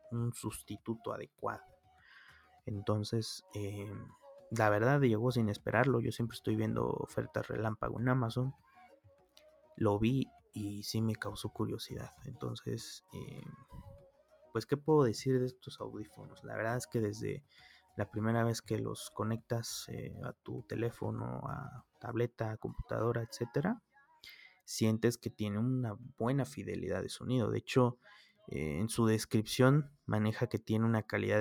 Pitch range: 105-130 Hz